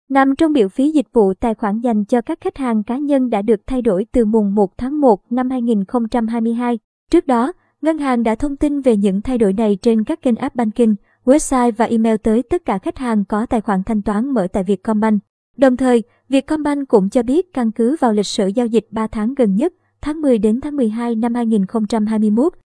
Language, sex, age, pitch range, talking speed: Vietnamese, male, 20-39, 220-265 Hz, 220 wpm